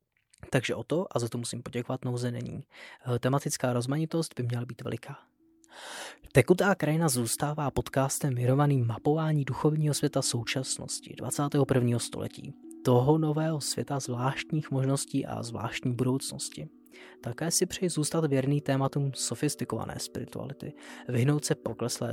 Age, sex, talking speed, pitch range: 20-39, male, 125 wpm, 120-150 Hz